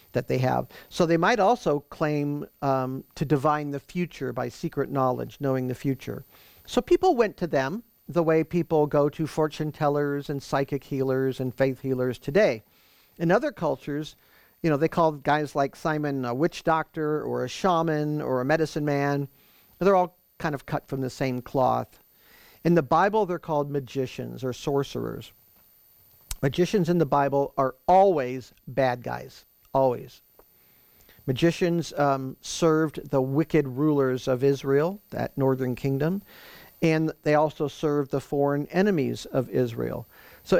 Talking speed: 155 wpm